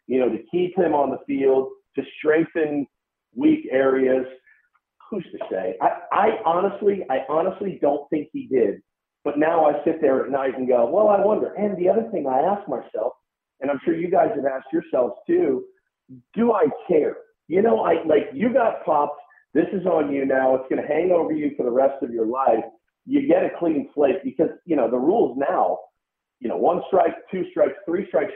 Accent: American